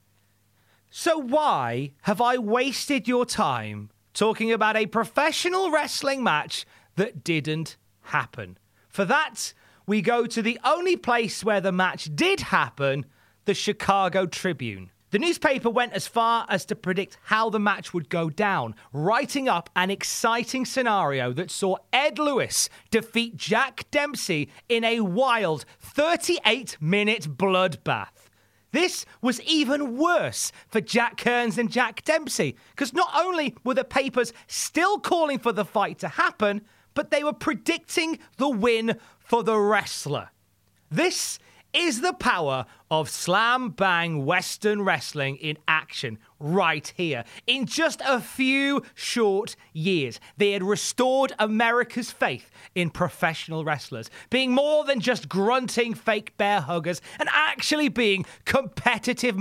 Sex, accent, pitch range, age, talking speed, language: male, British, 170-255 Hz, 30-49, 135 wpm, English